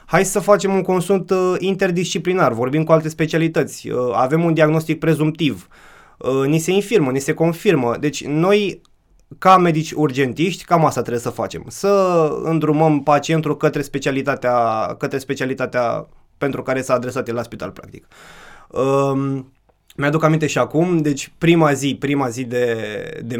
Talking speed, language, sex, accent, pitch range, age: 145 wpm, Romanian, male, native, 130-160 Hz, 20-39